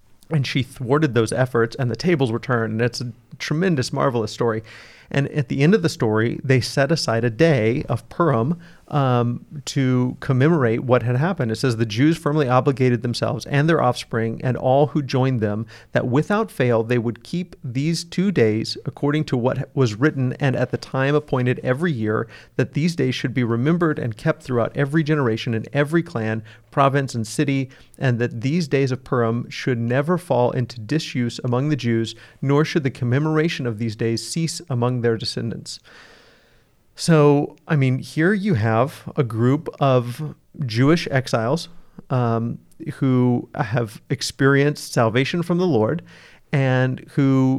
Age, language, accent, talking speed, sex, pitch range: 40-59, English, American, 170 wpm, male, 120-150 Hz